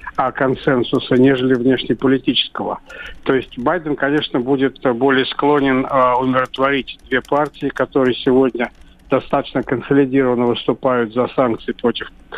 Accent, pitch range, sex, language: native, 125-145 Hz, male, Russian